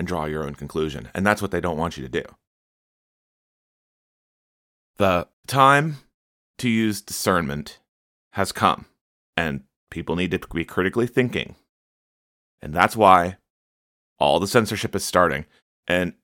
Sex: male